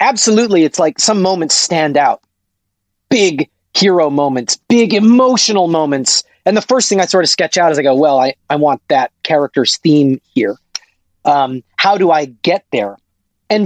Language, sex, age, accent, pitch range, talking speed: English, male, 30-49, American, 130-185 Hz, 175 wpm